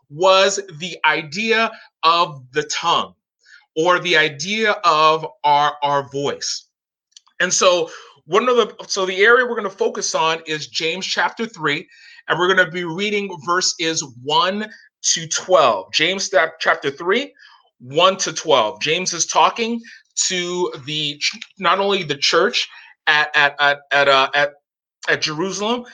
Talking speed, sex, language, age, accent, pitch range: 145 wpm, male, English, 30-49, American, 155-215 Hz